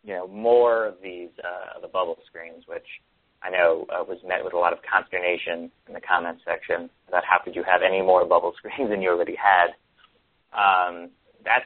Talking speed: 200 wpm